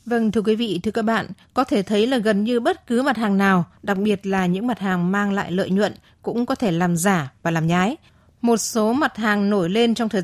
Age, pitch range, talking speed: 20-39, 190-235 Hz, 260 wpm